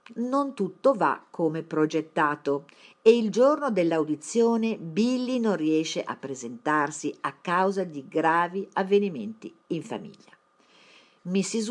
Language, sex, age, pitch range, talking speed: Italian, female, 50-69, 150-220 Hz, 115 wpm